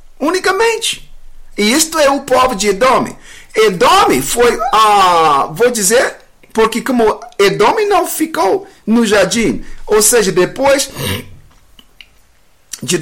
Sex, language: male, English